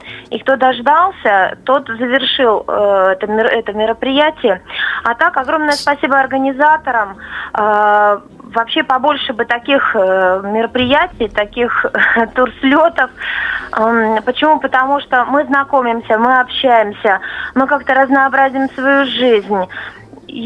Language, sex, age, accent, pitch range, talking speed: Russian, female, 20-39, native, 230-280 Hz, 105 wpm